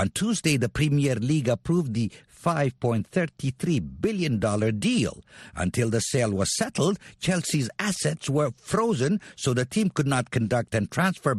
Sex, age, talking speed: male, 60-79, 140 wpm